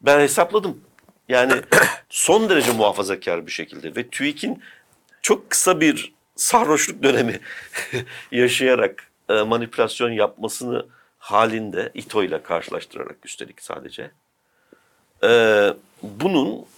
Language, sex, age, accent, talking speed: Turkish, male, 60-79, native, 90 wpm